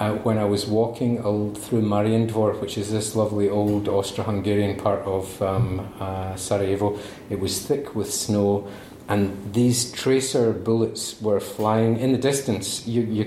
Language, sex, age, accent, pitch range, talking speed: English, male, 30-49, British, 100-115 Hz, 160 wpm